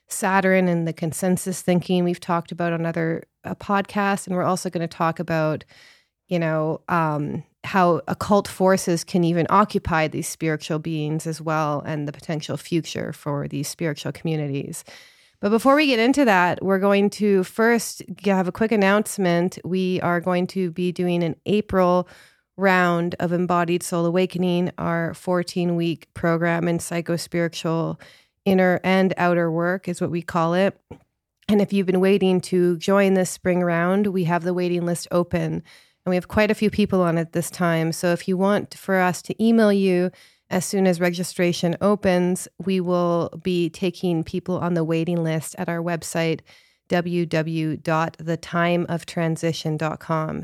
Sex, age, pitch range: female, 30-49, 165-185 Hz